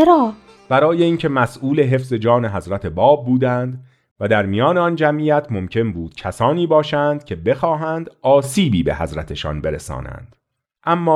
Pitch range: 105-145 Hz